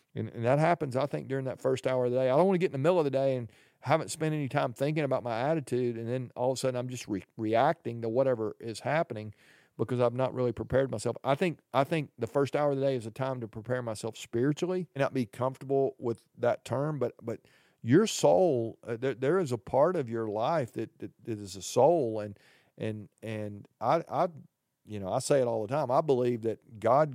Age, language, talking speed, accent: 40-59, English, 250 wpm, American